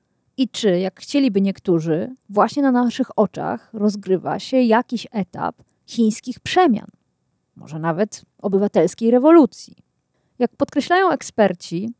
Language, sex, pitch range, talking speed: Polish, female, 205-280 Hz, 110 wpm